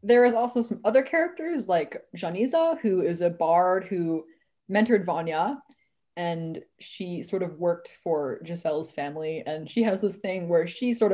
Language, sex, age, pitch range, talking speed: English, female, 20-39, 180-240 Hz, 165 wpm